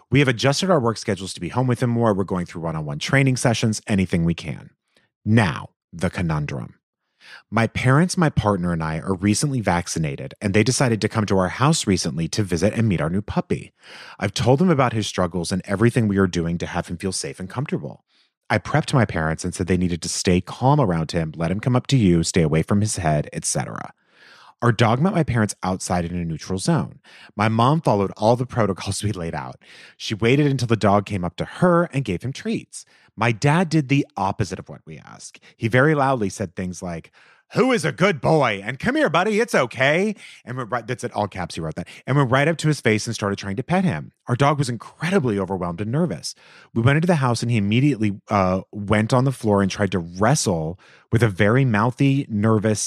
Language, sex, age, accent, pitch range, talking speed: English, male, 30-49, American, 95-135 Hz, 230 wpm